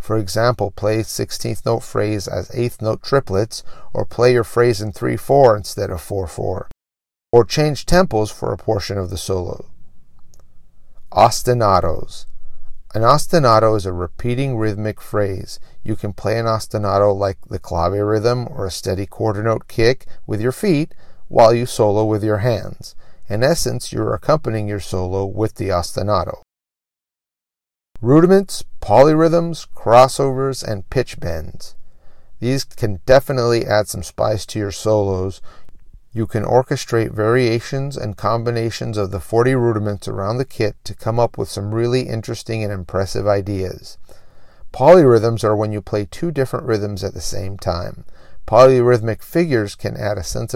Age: 40-59